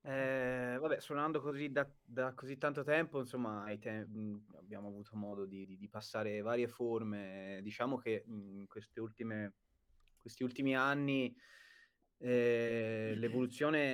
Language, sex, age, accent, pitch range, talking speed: Italian, male, 20-39, native, 100-125 Hz, 130 wpm